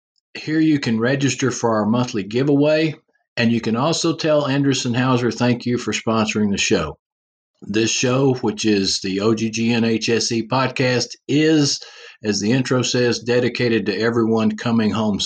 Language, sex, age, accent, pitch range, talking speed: English, male, 50-69, American, 110-135 Hz, 150 wpm